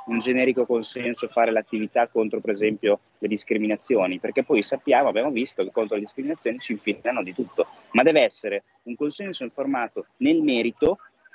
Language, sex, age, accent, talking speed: Italian, male, 30-49, native, 165 wpm